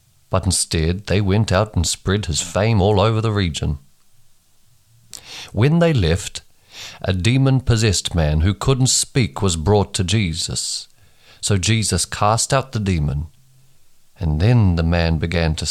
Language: English